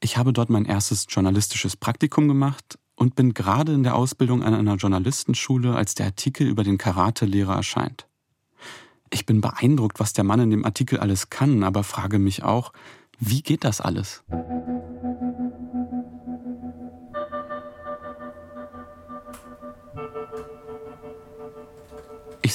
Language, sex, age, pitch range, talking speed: German, male, 30-49, 100-135 Hz, 115 wpm